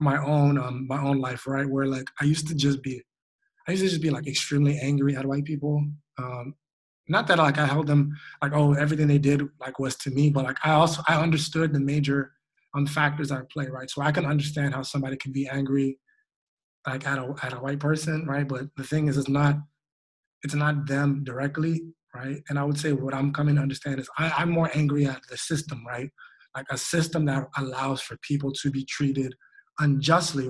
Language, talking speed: English, 220 wpm